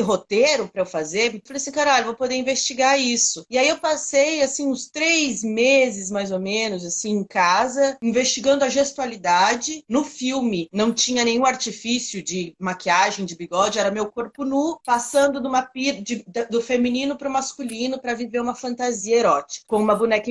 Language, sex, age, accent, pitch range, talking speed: Portuguese, female, 30-49, Brazilian, 210-275 Hz, 185 wpm